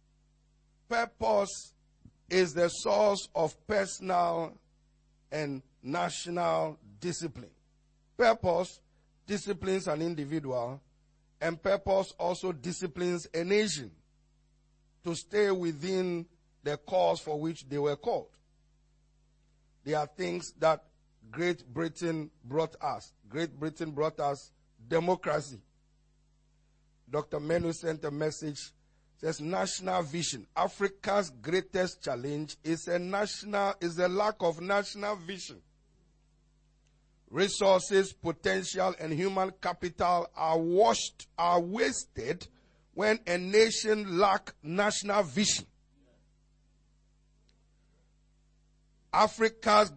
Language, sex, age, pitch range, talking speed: English, male, 50-69, 150-195 Hz, 95 wpm